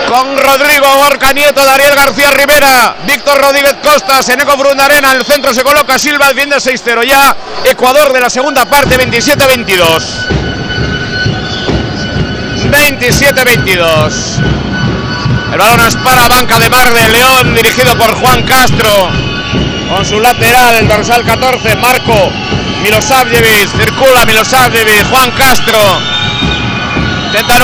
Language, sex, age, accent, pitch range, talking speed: Spanish, male, 60-79, Spanish, 220-275 Hz, 115 wpm